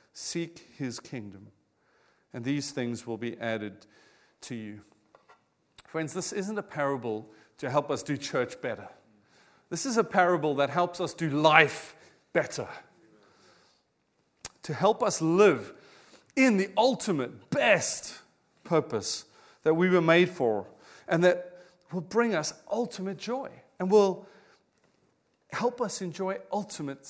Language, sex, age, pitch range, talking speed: English, male, 40-59, 145-200 Hz, 130 wpm